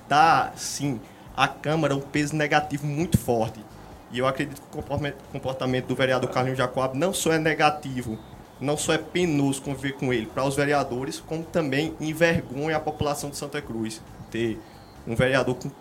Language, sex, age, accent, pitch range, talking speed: Portuguese, male, 20-39, Brazilian, 125-145 Hz, 170 wpm